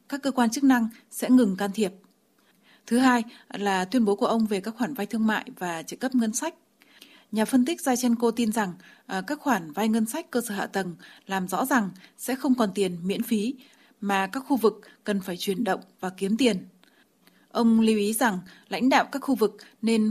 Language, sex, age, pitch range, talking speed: Vietnamese, female, 20-39, 200-245 Hz, 215 wpm